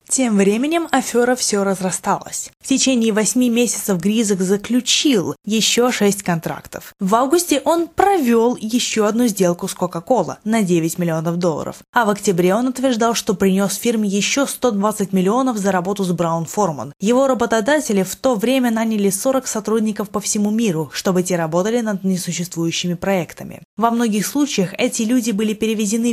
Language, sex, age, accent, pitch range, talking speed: Russian, female, 20-39, native, 185-240 Hz, 155 wpm